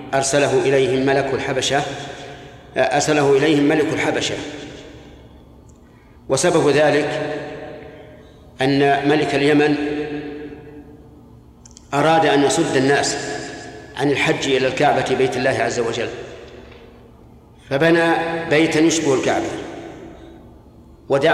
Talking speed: 85 wpm